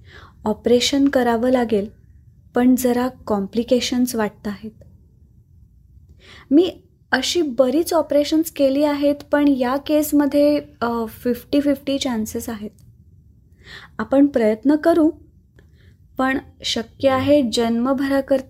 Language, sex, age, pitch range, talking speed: Marathi, female, 20-39, 215-275 Hz, 75 wpm